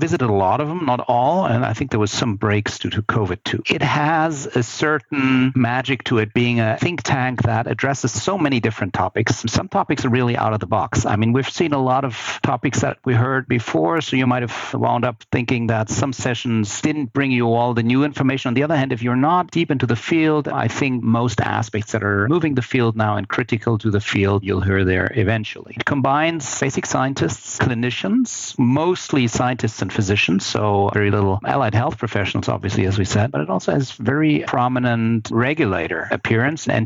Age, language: 50-69, English